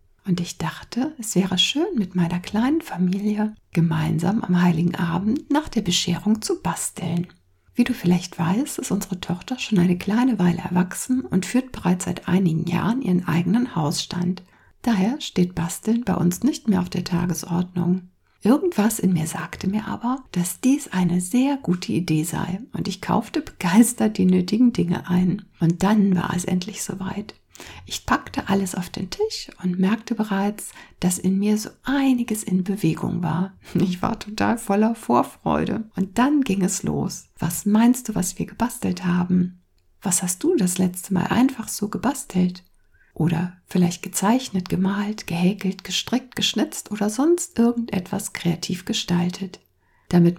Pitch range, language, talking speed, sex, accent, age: 180-225 Hz, German, 160 wpm, female, German, 60-79